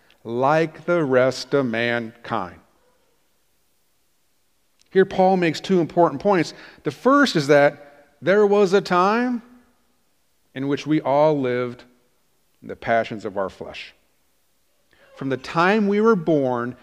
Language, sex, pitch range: English, male, 130-195 Hz